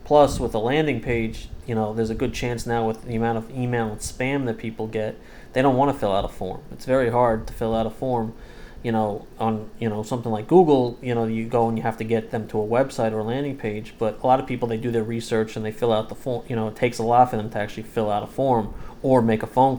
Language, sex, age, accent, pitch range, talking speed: English, male, 30-49, American, 110-125 Hz, 290 wpm